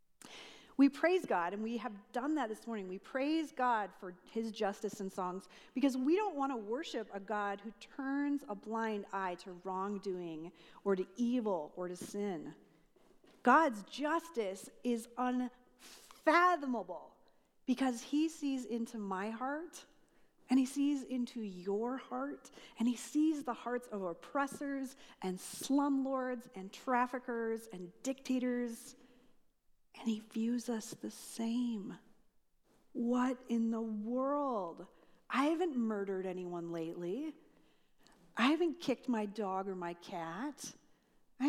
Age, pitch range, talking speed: 40-59, 200-270 Hz, 135 wpm